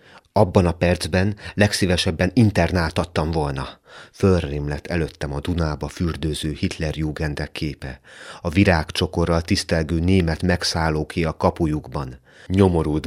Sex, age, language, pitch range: male, 30-49, Hungarian, 75-95 Hz